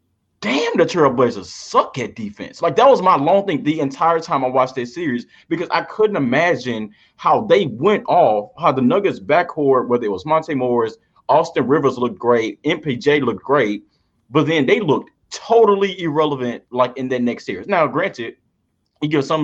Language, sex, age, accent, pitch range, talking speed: English, male, 30-49, American, 115-160 Hz, 180 wpm